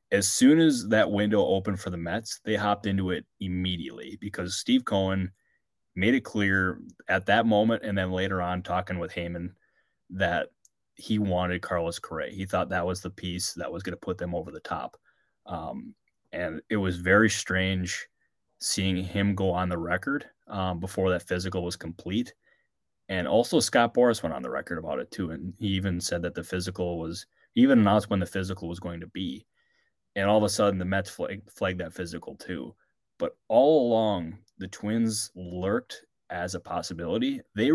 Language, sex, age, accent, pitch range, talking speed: English, male, 20-39, American, 90-105 Hz, 190 wpm